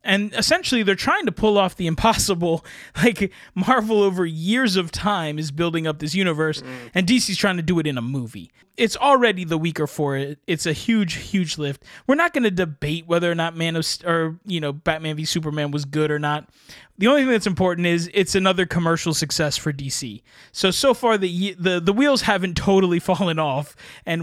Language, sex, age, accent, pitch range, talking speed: English, male, 20-39, American, 155-200 Hz, 210 wpm